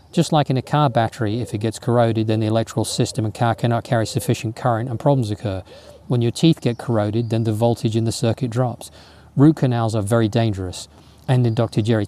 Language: English